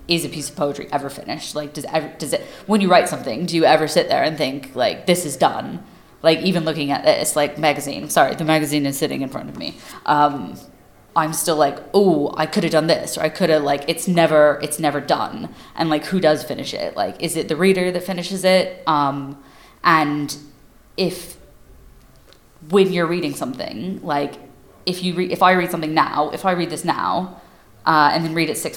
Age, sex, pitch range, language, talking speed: 20-39, female, 145-165 Hz, English, 215 wpm